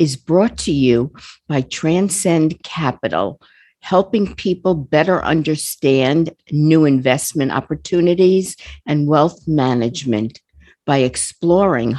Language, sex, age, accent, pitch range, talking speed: English, female, 50-69, American, 135-175 Hz, 95 wpm